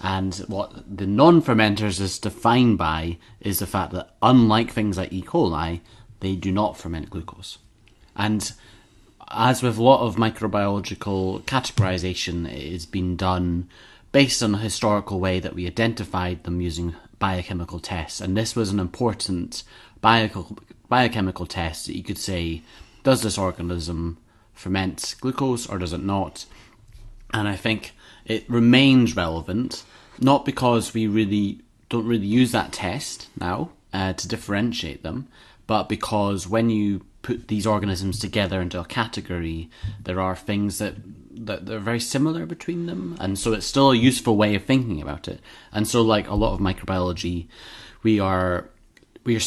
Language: English